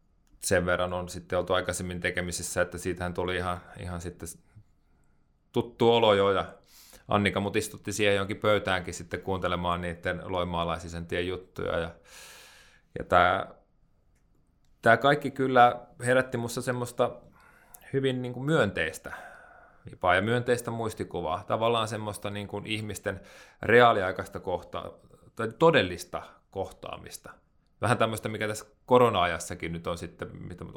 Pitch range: 85-105 Hz